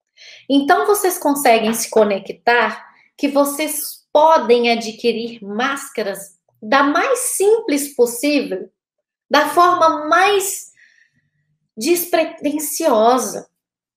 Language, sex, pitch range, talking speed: Portuguese, female, 220-300 Hz, 75 wpm